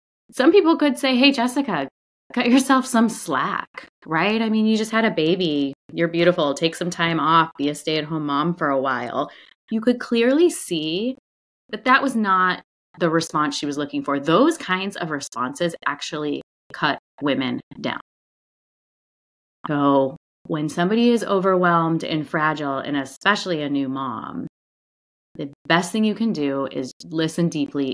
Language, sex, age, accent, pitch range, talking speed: English, female, 30-49, American, 145-195 Hz, 160 wpm